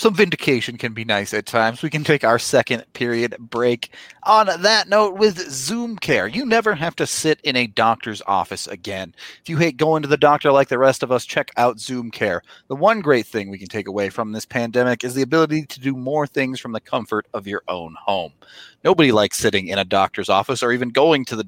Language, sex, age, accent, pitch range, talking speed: English, male, 30-49, American, 115-160 Hz, 230 wpm